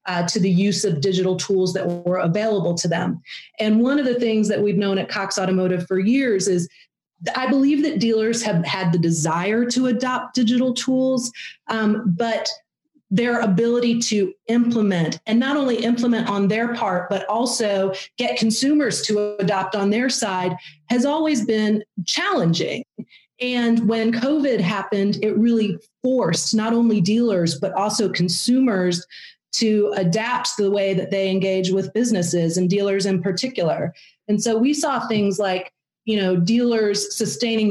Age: 40-59